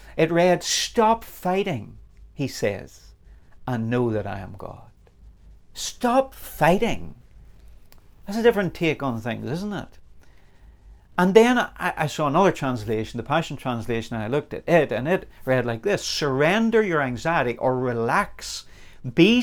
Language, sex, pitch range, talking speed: English, male, 105-155 Hz, 145 wpm